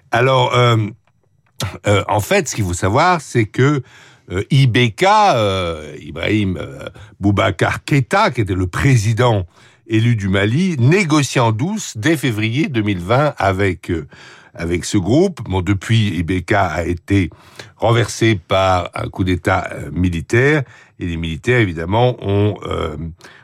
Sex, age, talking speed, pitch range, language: male, 60-79, 140 wpm, 95-130 Hz, French